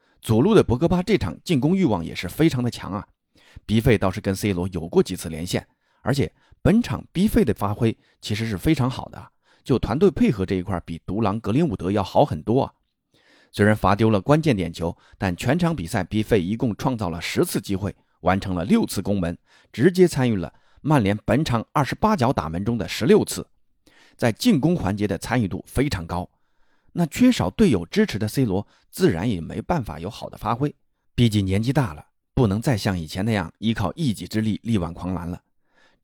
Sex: male